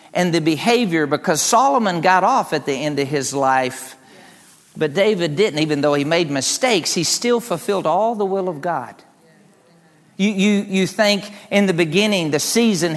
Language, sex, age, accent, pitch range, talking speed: English, male, 50-69, American, 170-220 Hz, 175 wpm